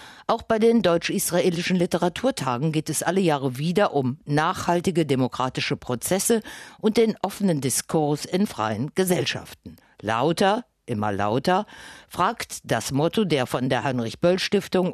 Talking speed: 125 wpm